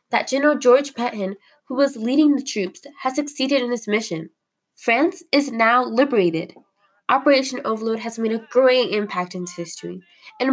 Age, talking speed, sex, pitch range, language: 10-29, 160 wpm, female, 190-260 Hz, English